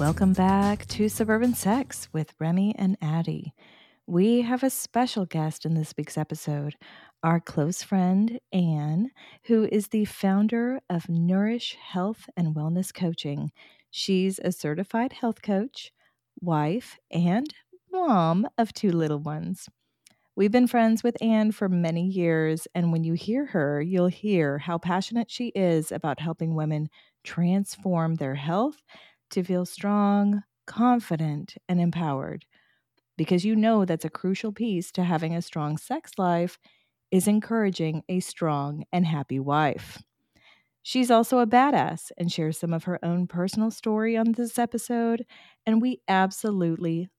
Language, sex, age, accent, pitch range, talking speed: English, female, 30-49, American, 160-220 Hz, 145 wpm